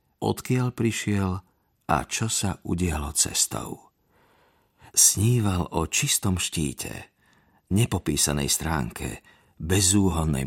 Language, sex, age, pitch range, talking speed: Slovak, male, 50-69, 80-110 Hz, 80 wpm